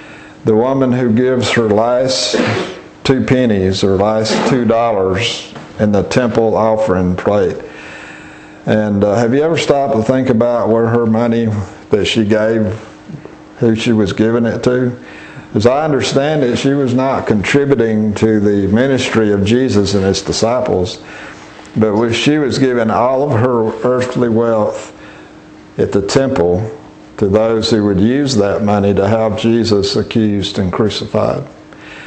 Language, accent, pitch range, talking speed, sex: English, American, 100-120 Hz, 150 wpm, male